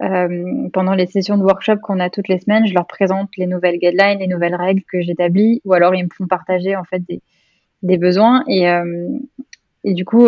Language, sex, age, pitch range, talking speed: French, female, 20-39, 180-210 Hz, 220 wpm